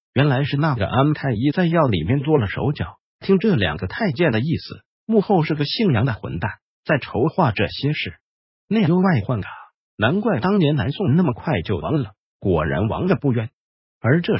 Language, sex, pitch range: Chinese, male, 120-175 Hz